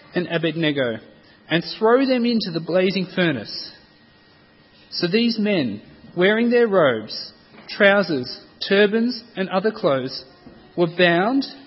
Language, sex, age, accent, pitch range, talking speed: English, male, 30-49, Australian, 175-240 Hz, 115 wpm